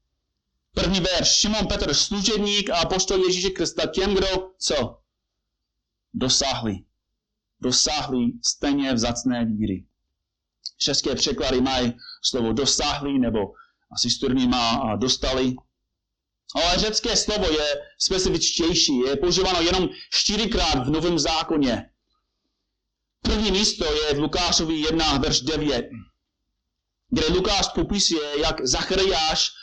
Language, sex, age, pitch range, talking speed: Czech, male, 30-49, 120-185 Hz, 105 wpm